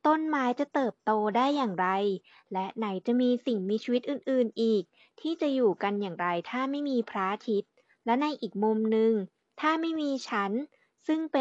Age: 20-39